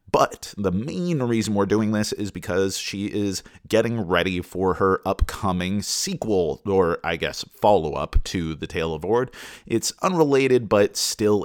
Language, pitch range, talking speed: English, 85-110 Hz, 155 wpm